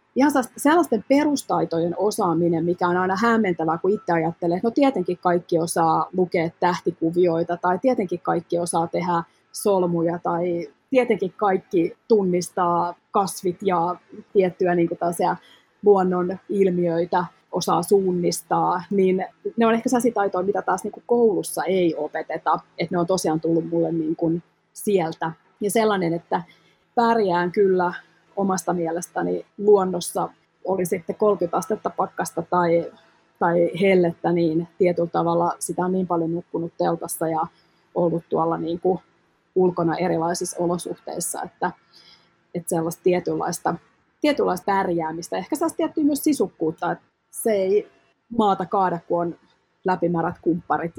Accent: native